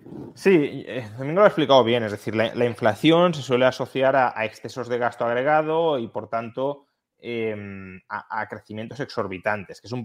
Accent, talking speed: Spanish, 190 wpm